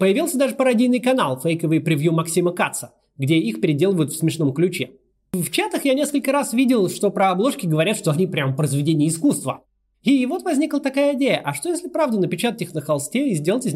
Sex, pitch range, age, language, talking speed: male, 140-215 Hz, 30-49, Russian, 195 wpm